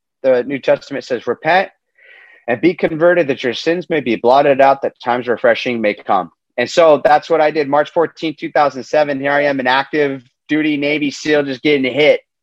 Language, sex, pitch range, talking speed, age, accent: English, male, 130-160 Hz, 195 wpm, 30-49, American